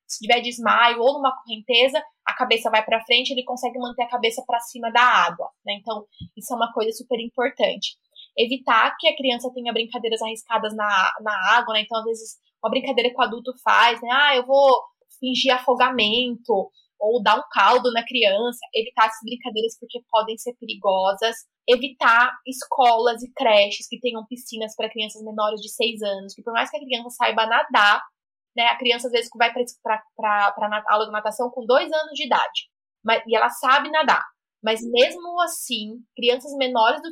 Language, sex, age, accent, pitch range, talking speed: Portuguese, female, 20-39, Brazilian, 220-255 Hz, 185 wpm